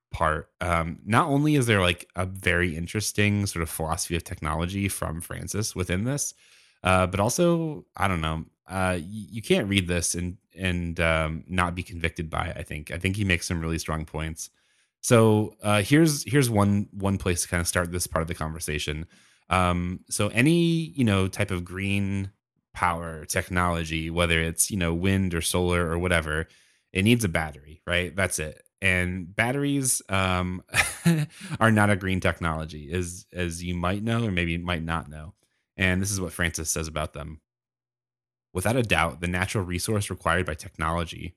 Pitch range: 85-100 Hz